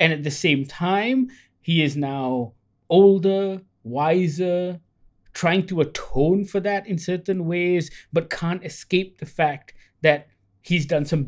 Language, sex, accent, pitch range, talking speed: English, male, Indian, 125-175 Hz, 145 wpm